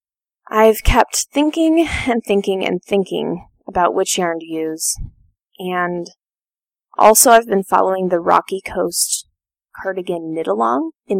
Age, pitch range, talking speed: 20-39, 185-260 Hz, 130 wpm